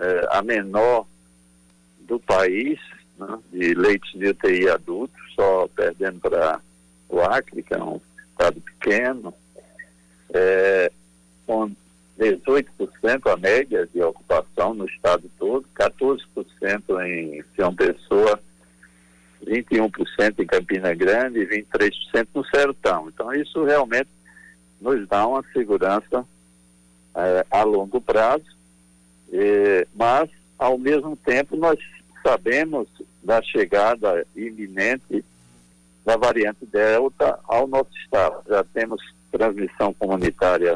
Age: 60-79